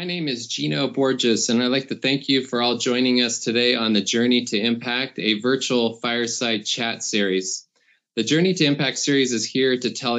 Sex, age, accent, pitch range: male, 20-39, American, 115-135 Hz